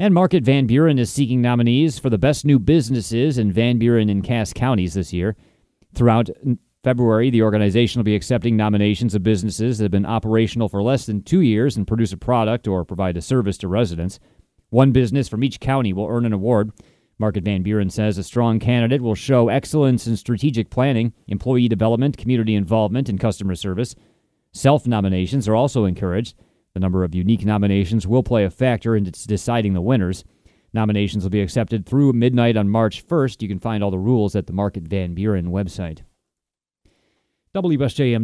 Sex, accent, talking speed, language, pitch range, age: male, American, 185 wpm, English, 100-125 Hz, 30-49